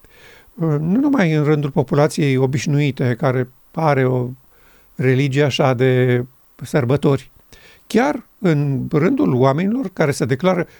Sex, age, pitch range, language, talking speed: male, 50-69, 130-175 Hz, Romanian, 110 wpm